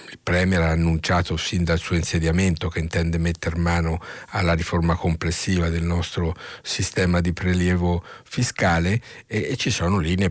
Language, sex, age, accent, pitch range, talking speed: Italian, male, 50-69, native, 85-95 Hz, 150 wpm